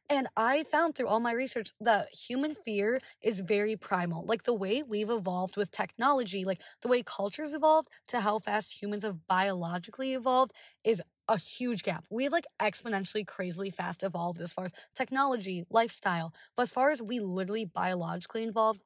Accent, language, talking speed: American, English, 180 wpm